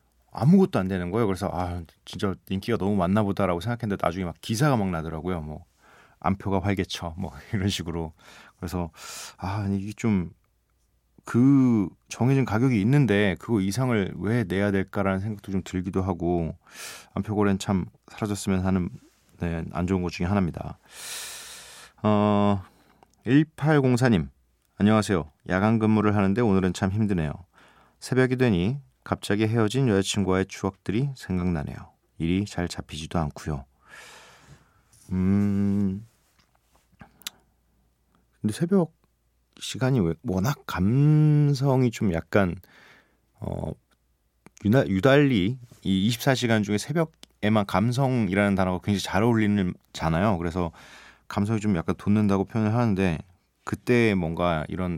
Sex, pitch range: male, 90-115 Hz